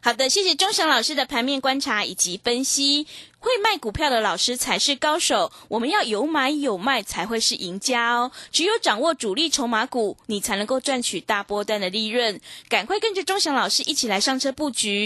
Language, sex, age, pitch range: Chinese, female, 20-39, 220-300 Hz